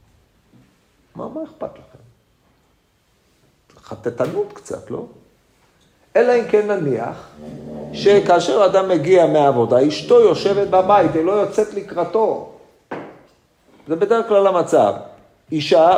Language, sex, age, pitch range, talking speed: Hebrew, male, 40-59, 160-230 Hz, 105 wpm